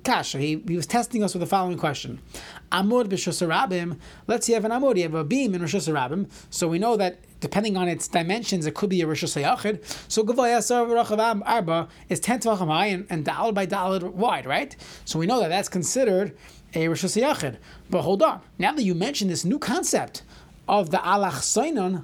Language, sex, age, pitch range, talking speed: English, male, 30-49, 165-220 Hz, 195 wpm